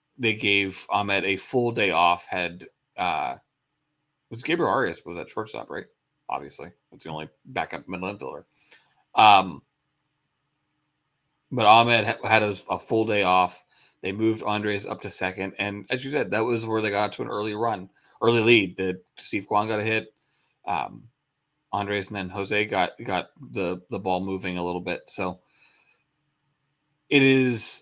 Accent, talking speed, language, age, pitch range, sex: American, 165 wpm, English, 30-49, 95-135 Hz, male